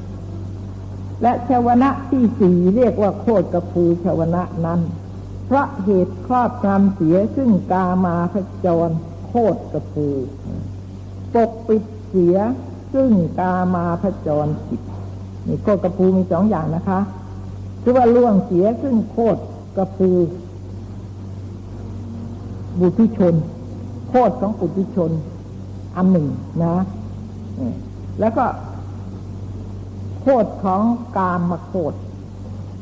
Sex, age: female, 60-79